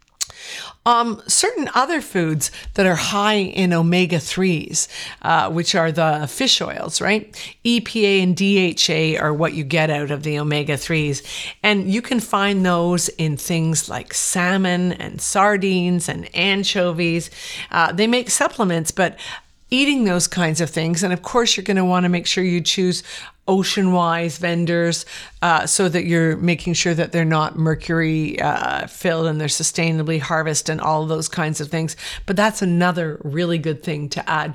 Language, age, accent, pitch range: English, 50-69, American, 160-200 Hz